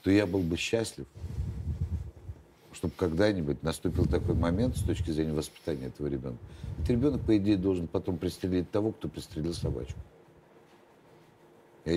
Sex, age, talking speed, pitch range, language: male, 60-79, 140 wpm, 75-100 Hz, Russian